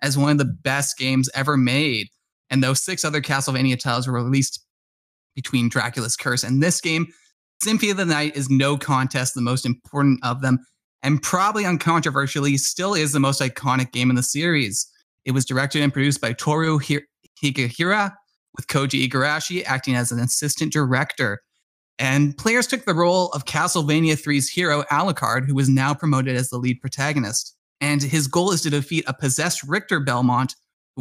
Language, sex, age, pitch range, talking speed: English, male, 20-39, 130-155 Hz, 175 wpm